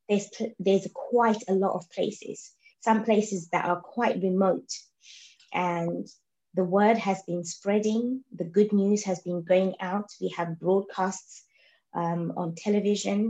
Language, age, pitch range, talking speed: English, 20-39, 180-210 Hz, 145 wpm